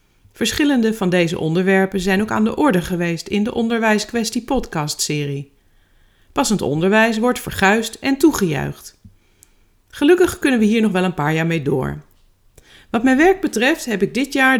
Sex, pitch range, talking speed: female, 160-230 Hz, 160 wpm